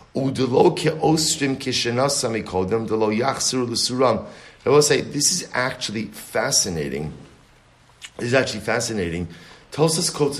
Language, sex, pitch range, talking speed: English, male, 110-140 Hz, 75 wpm